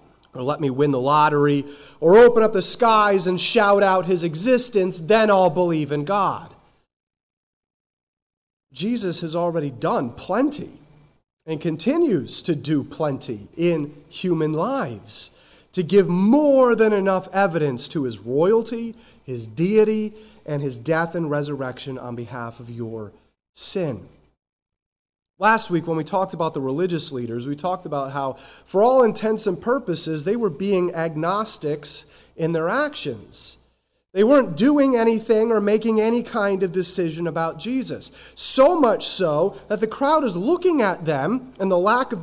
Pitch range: 150-220 Hz